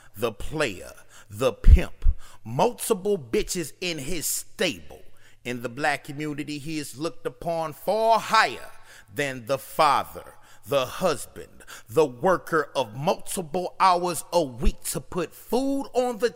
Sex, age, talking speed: male, 30-49, 130 wpm